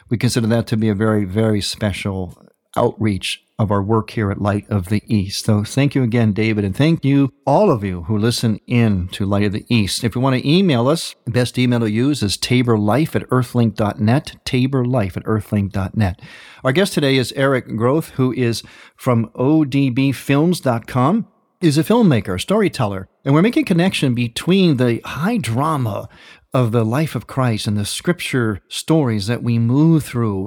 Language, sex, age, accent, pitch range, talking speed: English, male, 50-69, American, 110-150 Hz, 180 wpm